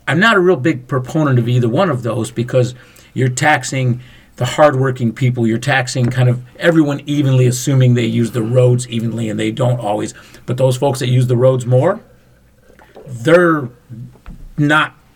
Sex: male